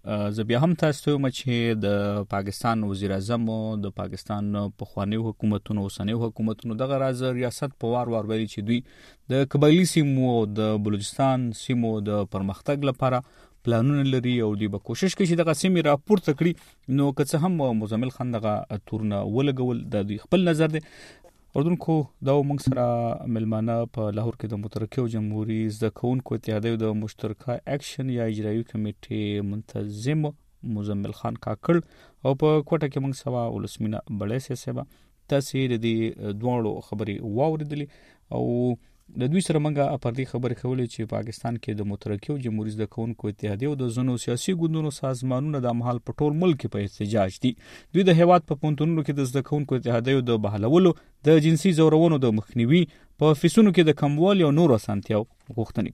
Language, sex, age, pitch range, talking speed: Urdu, male, 30-49, 110-140 Hz, 160 wpm